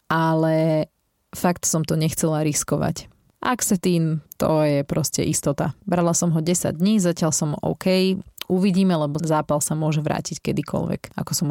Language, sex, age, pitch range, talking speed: Slovak, female, 30-49, 155-185 Hz, 145 wpm